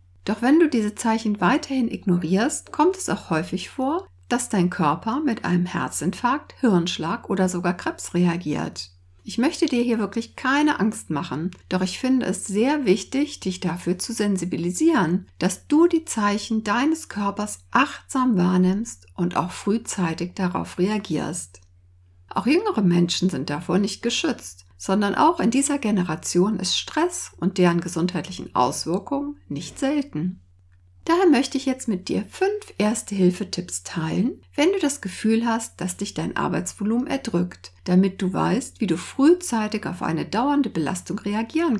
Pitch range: 175-255 Hz